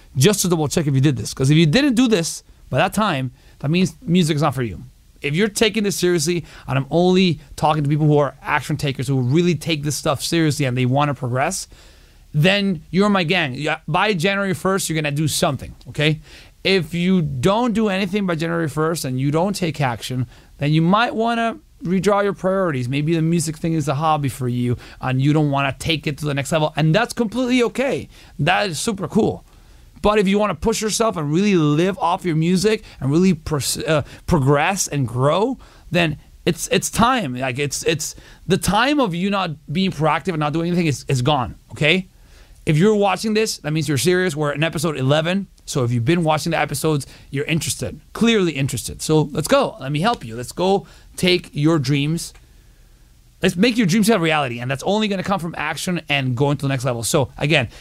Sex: male